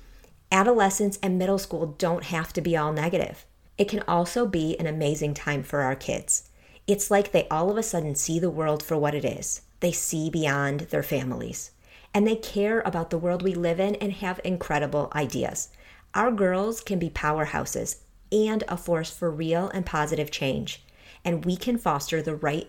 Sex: female